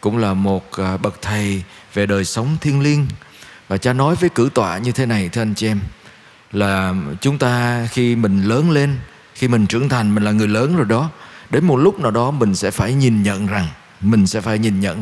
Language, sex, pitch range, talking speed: Vietnamese, male, 105-140 Hz, 225 wpm